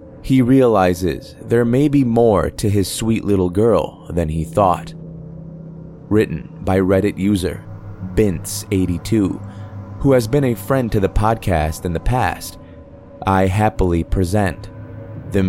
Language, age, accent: English, 20-39, American